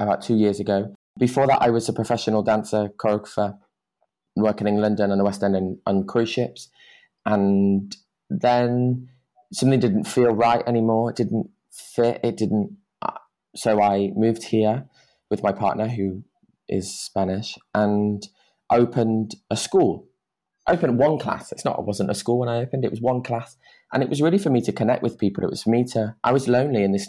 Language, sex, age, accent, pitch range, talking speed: English, male, 20-39, British, 100-125 Hz, 190 wpm